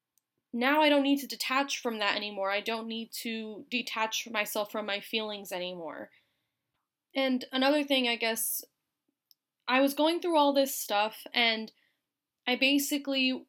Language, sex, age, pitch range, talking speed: English, female, 10-29, 210-260 Hz, 150 wpm